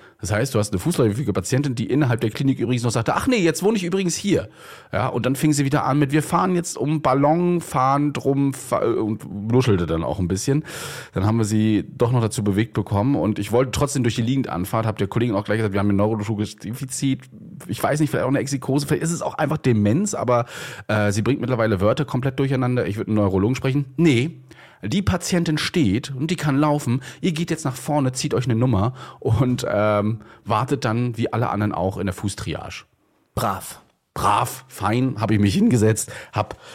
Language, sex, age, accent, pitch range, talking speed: German, male, 30-49, German, 100-135 Hz, 215 wpm